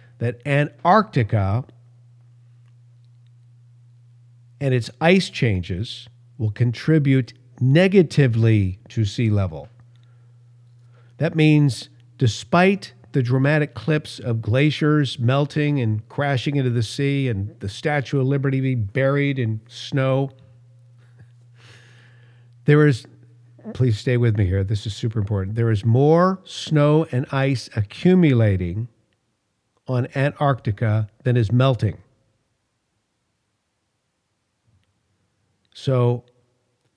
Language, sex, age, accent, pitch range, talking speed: English, male, 50-69, American, 115-140 Hz, 95 wpm